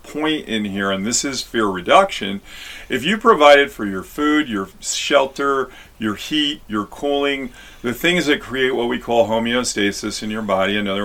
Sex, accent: male, American